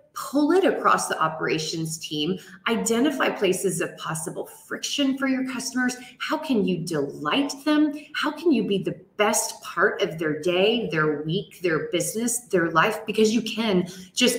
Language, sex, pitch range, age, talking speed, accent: English, female, 170-225 Hz, 30-49, 165 wpm, American